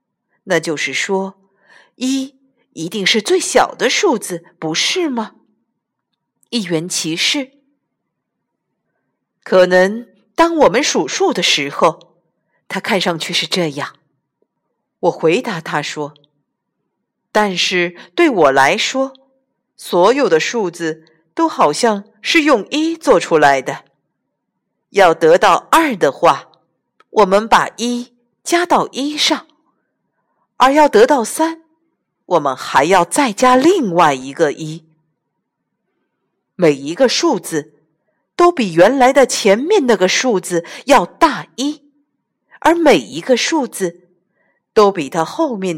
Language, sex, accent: Chinese, female, native